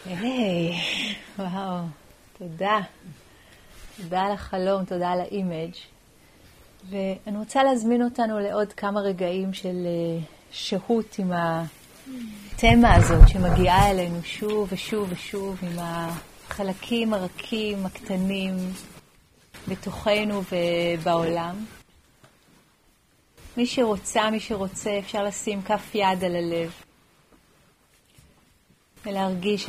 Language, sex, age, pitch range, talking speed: Hebrew, female, 30-49, 180-210 Hz, 90 wpm